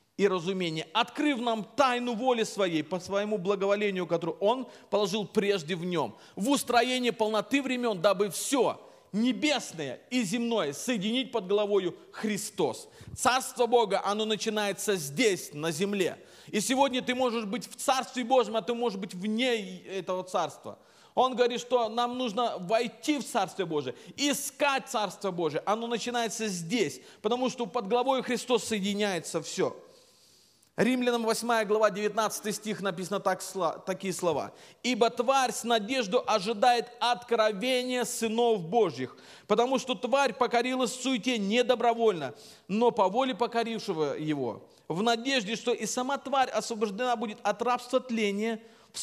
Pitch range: 205-245 Hz